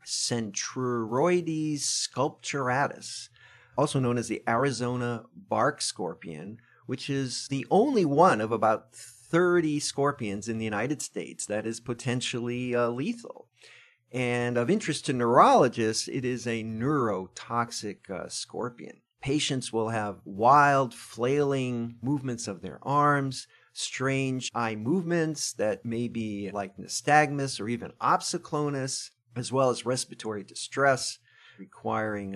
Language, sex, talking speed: English, male, 120 wpm